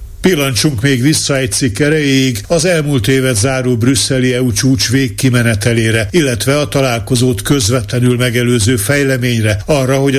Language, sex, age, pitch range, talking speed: Hungarian, male, 50-69, 120-140 Hz, 130 wpm